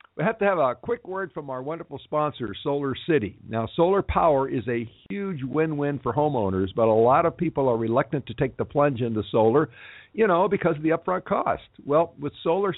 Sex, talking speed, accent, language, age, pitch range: male, 215 wpm, American, English, 50-69, 110-150 Hz